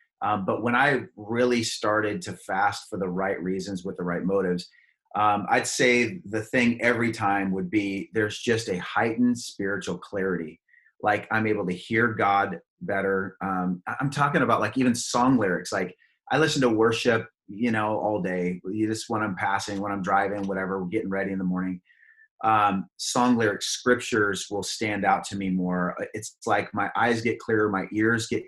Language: English